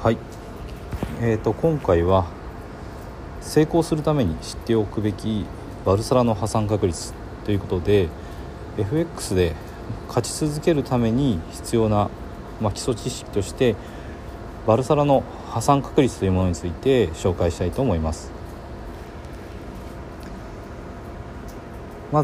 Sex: male